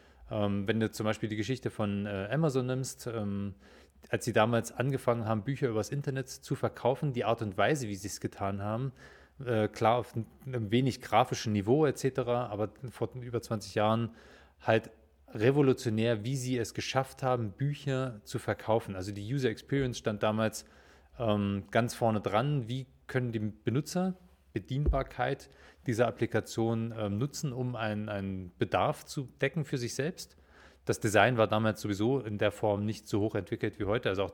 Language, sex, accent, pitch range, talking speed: German, male, German, 105-130 Hz, 165 wpm